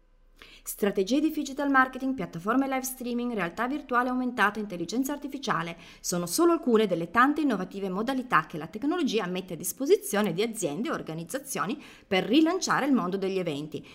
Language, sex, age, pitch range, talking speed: Italian, female, 30-49, 180-275 Hz, 150 wpm